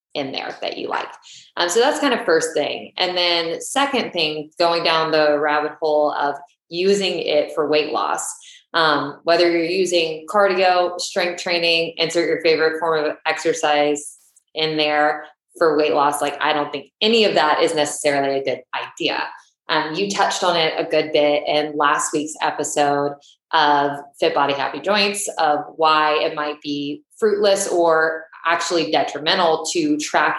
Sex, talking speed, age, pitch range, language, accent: female, 170 wpm, 20-39, 150-180 Hz, English, American